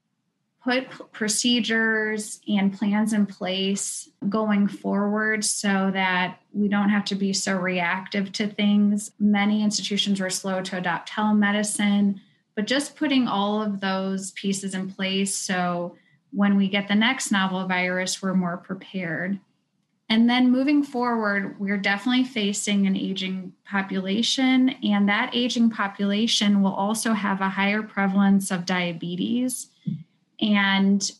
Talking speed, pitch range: 135 wpm, 190-215 Hz